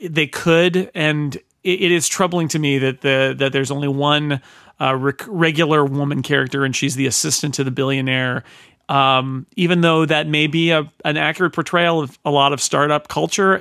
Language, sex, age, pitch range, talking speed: English, male, 40-59, 140-175 Hz, 185 wpm